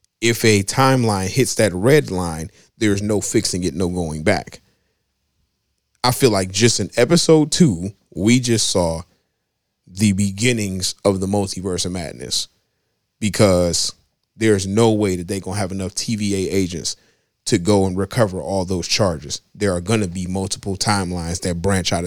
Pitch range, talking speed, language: 95-120 Hz, 165 wpm, English